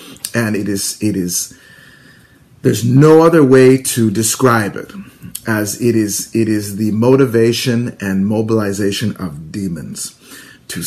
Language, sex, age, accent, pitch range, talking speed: English, male, 40-59, American, 105-140 Hz, 130 wpm